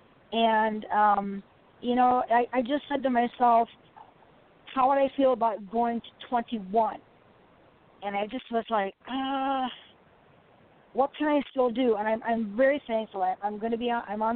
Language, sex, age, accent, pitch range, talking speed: English, female, 50-69, American, 205-240 Hz, 165 wpm